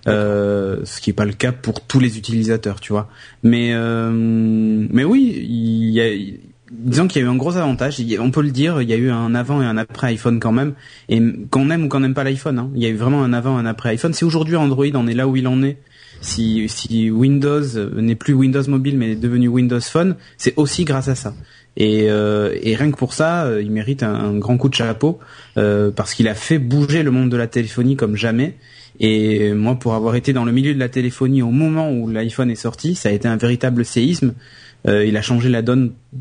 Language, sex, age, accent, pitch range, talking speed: French, male, 20-39, French, 110-135 Hz, 245 wpm